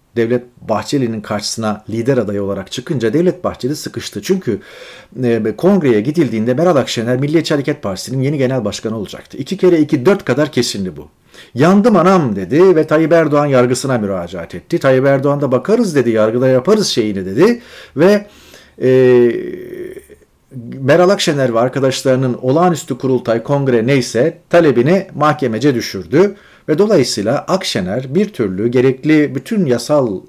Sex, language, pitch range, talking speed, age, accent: male, Turkish, 120-175 Hz, 135 wpm, 40-59, native